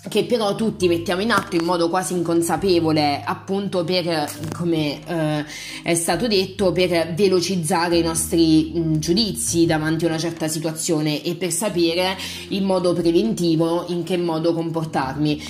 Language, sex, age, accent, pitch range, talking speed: Italian, female, 20-39, native, 165-205 Hz, 145 wpm